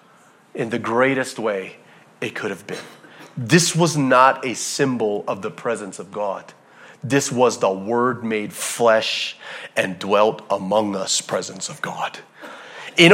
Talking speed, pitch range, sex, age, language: 145 wpm, 140-235 Hz, male, 30-49, English